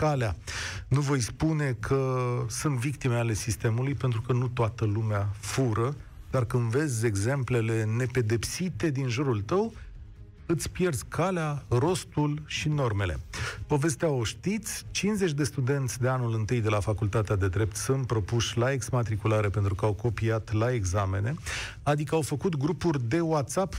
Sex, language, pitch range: male, Romanian, 115-155 Hz